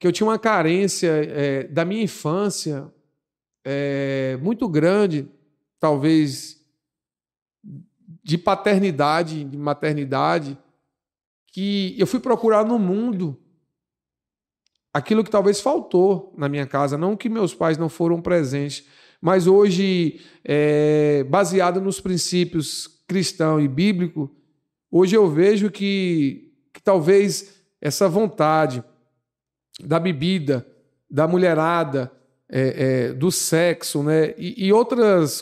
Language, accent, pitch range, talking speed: Portuguese, Brazilian, 150-190 Hz, 105 wpm